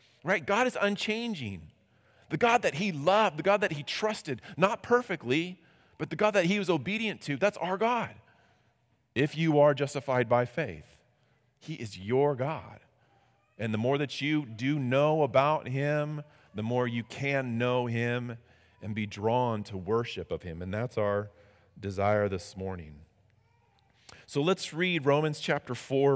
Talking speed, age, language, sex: 165 wpm, 40-59, English, male